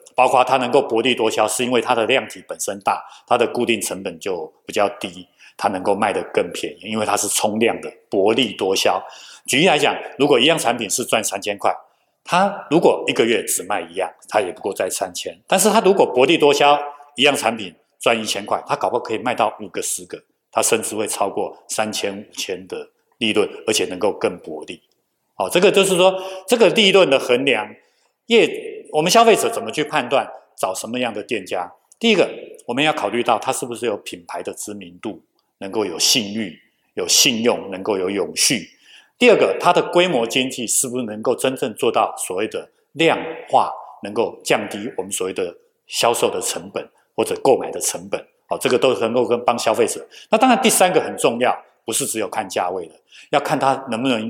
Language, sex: Chinese, male